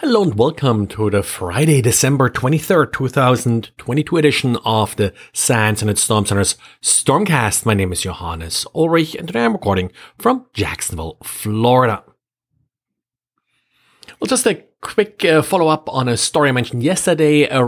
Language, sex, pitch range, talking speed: English, male, 110-145 Hz, 145 wpm